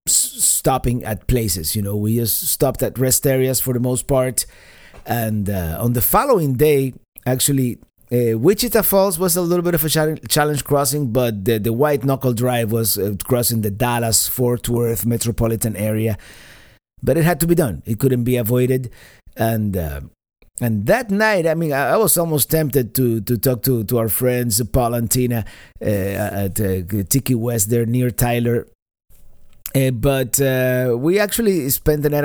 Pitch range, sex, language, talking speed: 115-140 Hz, male, English, 175 wpm